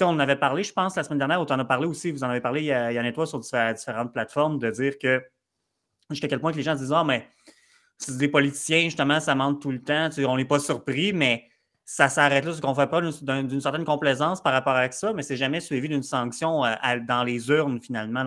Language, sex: French, male